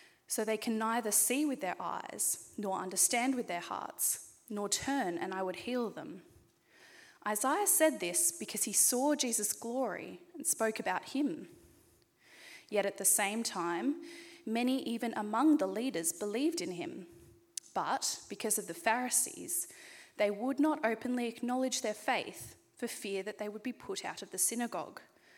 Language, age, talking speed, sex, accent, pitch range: English, 10-29, 160 wpm, female, Australian, 205-290 Hz